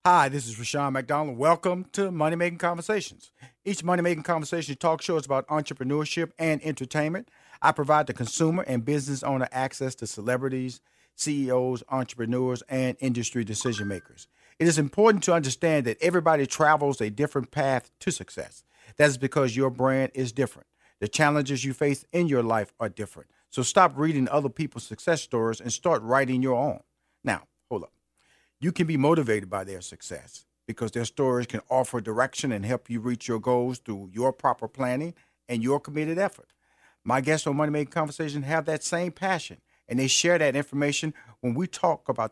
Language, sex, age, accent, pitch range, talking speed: English, male, 50-69, American, 120-155 Hz, 180 wpm